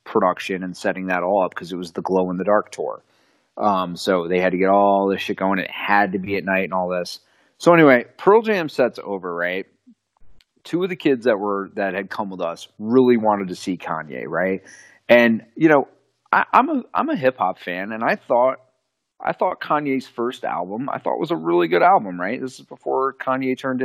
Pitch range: 95-115 Hz